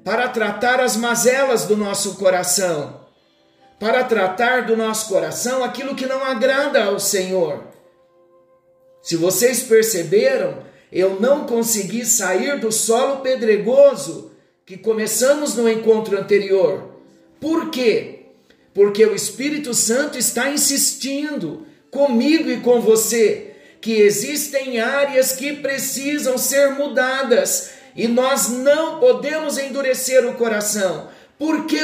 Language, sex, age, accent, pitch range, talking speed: Portuguese, male, 50-69, Brazilian, 200-270 Hz, 115 wpm